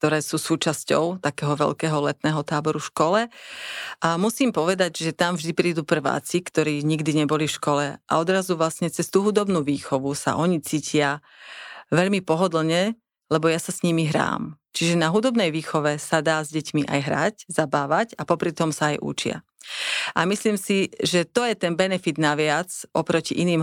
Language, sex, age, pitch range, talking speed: English, female, 40-59, 150-180 Hz, 170 wpm